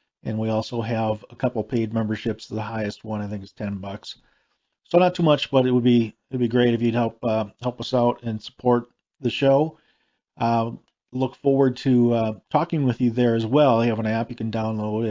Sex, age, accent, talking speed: male, 40-59, American, 225 wpm